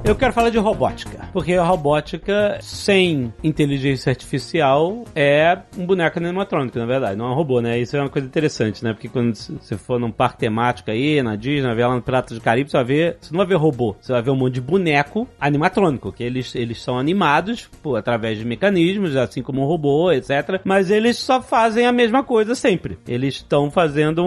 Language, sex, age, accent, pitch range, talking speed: Portuguese, male, 30-49, Brazilian, 140-195 Hz, 215 wpm